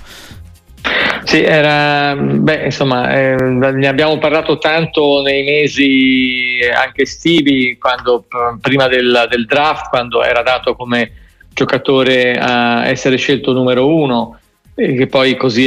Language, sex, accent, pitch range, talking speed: Italian, male, native, 125-145 Hz, 115 wpm